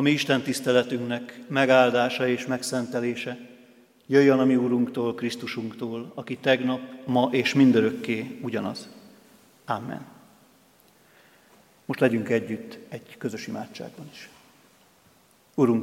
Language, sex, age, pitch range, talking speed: Hungarian, male, 50-69, 120-130 Hz, 100 wpm